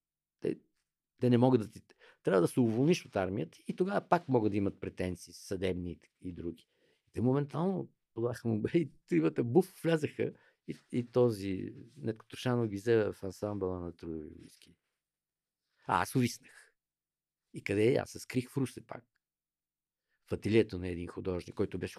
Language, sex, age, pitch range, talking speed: Bulgarian, male, 50-69, 95-155 Hz, 170 wpm